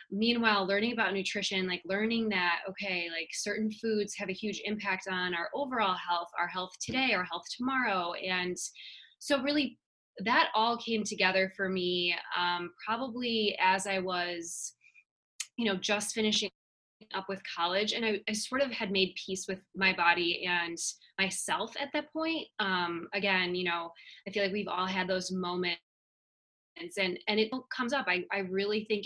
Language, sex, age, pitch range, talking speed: English, female, 10-29, 180-220 Hz, 170 wpm